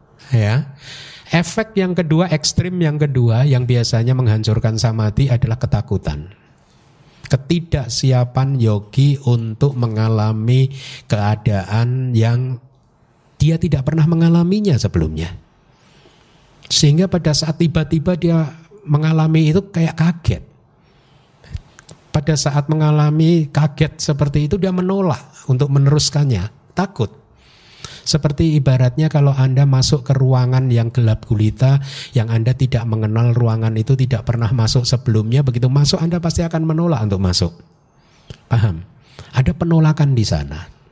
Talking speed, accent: 115 wpm, native